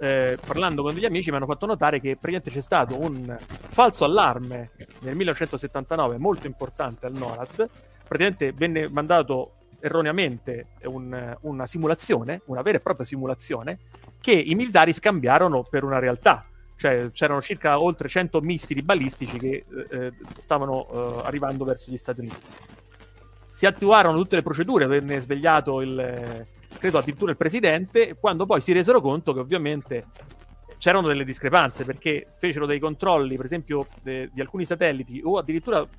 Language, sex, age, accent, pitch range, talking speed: Italian, male, 40-59, native, 125-165 Hz, 155 wpm